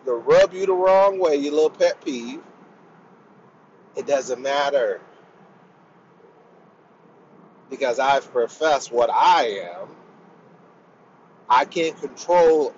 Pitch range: 155-230 Hz